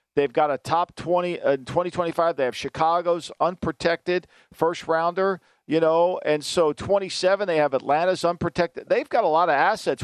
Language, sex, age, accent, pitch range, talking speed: English, male, 50-69, American, 150-185 Hz, 175 wpm